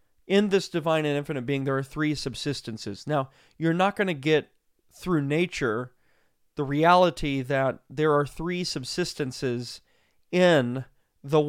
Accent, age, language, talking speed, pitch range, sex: American, 30-49, English, 140 wpm, 125-155 Hz, male